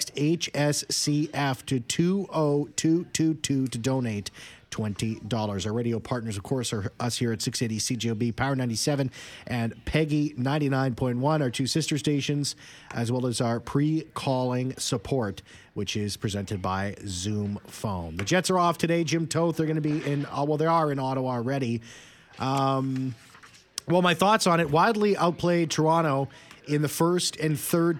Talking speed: 150 wpm